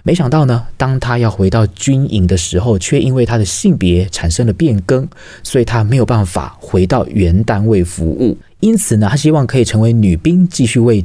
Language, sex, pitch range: Chinese, male, 95-135 Hz